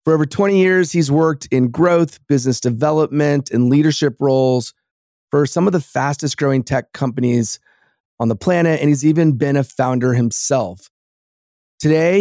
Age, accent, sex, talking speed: 30-49, American, male, 155 wpm